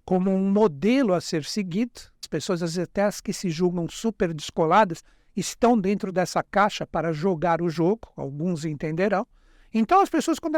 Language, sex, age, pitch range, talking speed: Portuguese, male, 60-79, 175-235 Hz, 165 wpm